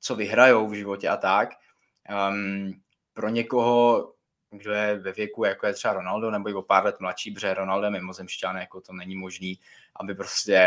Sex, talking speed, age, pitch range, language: male, 180 wpm, 20-39, 95-110 Hz, Czech